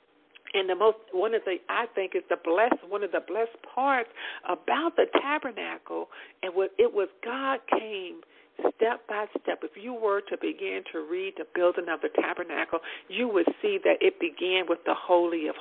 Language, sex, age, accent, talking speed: English, female, 50-69, American, 190 wpm